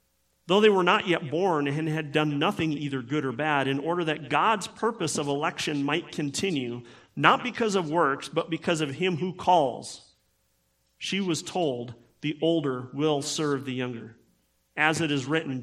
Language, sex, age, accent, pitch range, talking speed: English, male, 40-59, American, 125-175 Hz, 175 wpm